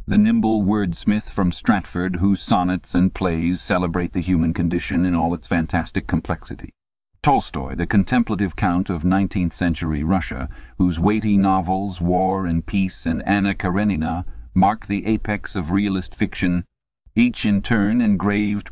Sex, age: male, 50-69